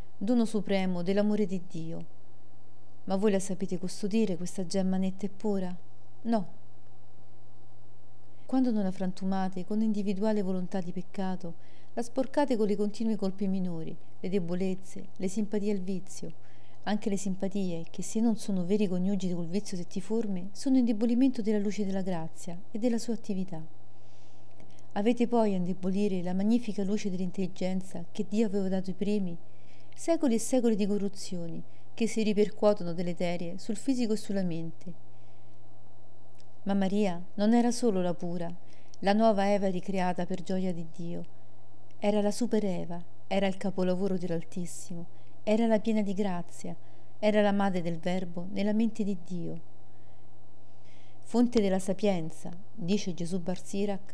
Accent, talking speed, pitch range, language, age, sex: native, 145 wpm, 175-210 Hz, Italian, 40-59, female